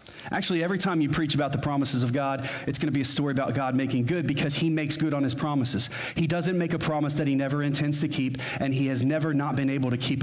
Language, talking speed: English, 275 wpm